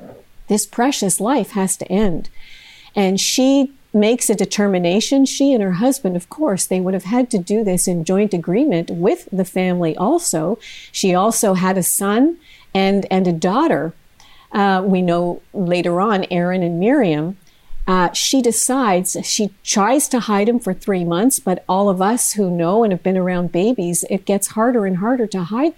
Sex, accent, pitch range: female, American, 180-225 Hz